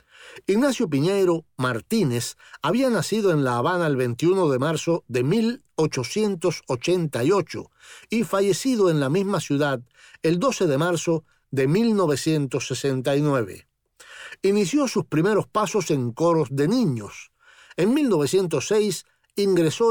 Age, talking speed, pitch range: 60-79, 110 wpm, 140-200 Hz